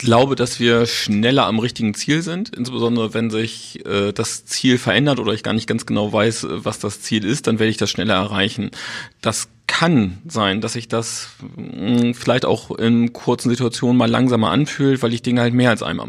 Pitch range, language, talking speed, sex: 115-135 Hz, German, 205 wpm, male